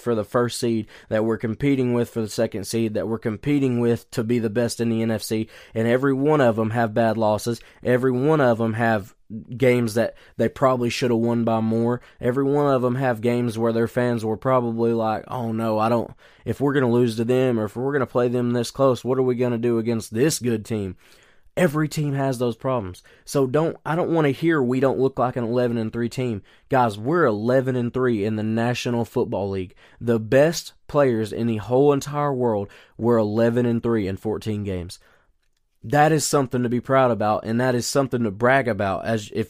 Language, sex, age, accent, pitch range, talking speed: English, male, 20-39, American, 115-135 Hz, 225 wpm